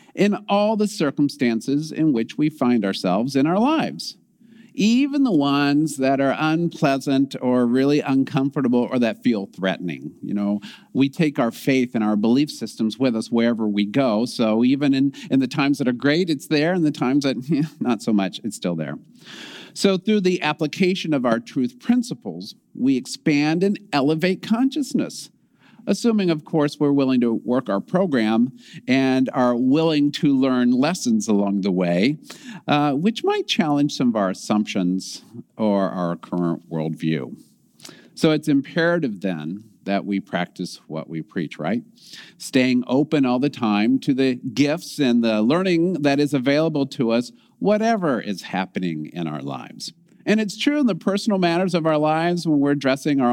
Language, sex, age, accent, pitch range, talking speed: English, male, 50-69, American, 120-175 Hz, 170 wpm